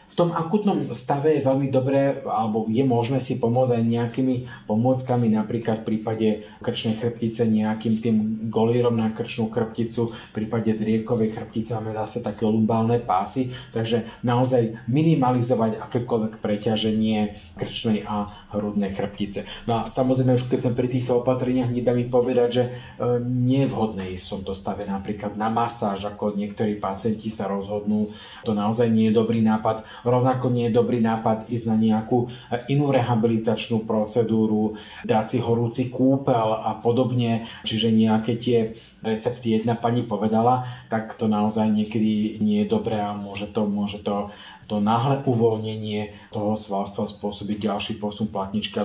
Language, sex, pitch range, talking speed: Slovak, male, 105-120 Hz, 145 wpm